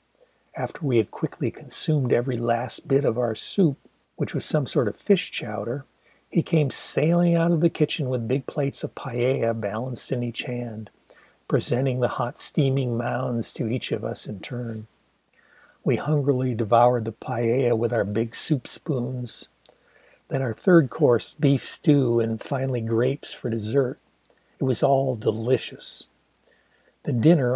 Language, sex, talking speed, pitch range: English, male, 155 wpm, 120-145 Hz